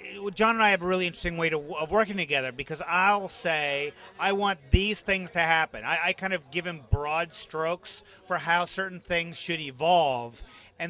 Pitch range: 150-185 Hz